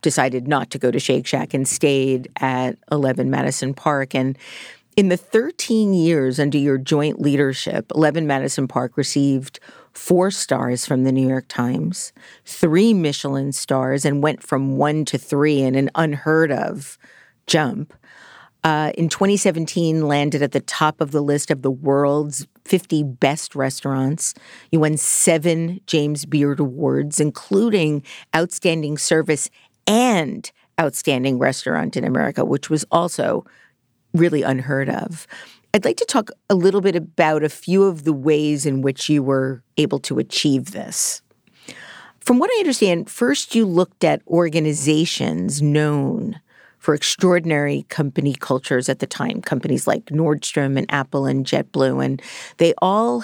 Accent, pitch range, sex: American, 135-170 Hz, female